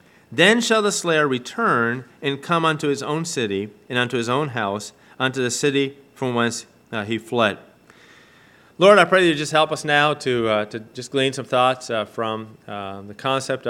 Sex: male